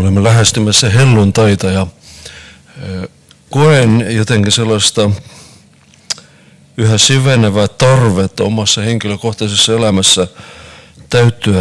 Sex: male